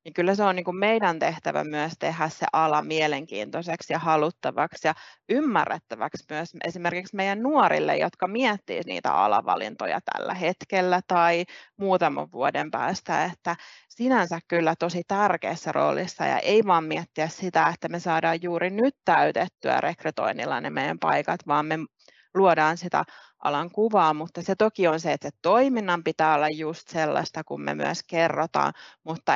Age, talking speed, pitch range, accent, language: 30-49, 145 wpm, 160-190 Hz, native, Finnish